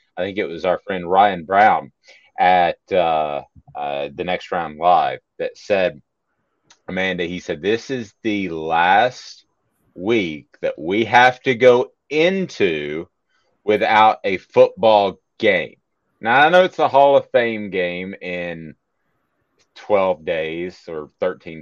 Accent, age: American, 30-49